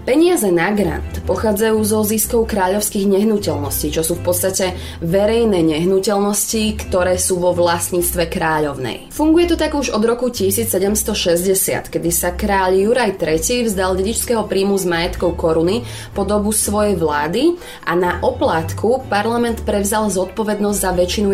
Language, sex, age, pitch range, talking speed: Slovak, female, 20-39, 175-220 Hz, 140 wpm